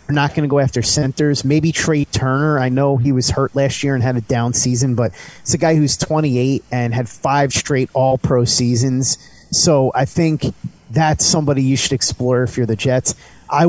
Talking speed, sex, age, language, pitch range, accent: 205 wpm, male, 30-49, English, 125-155 Hz, American